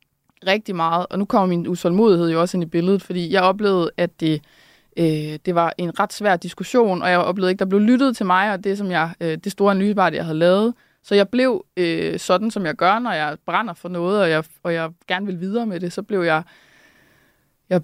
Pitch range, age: 165-200 Hz, 20-39